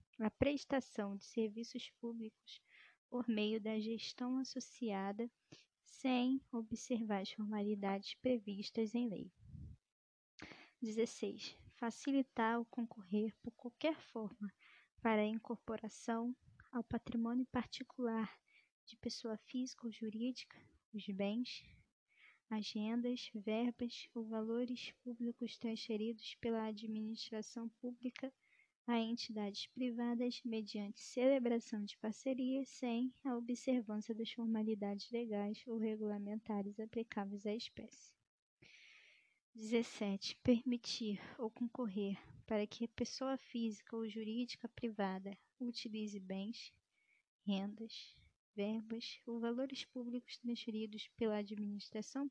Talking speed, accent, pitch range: 100 wpm, Brazilian, 215-245 Hz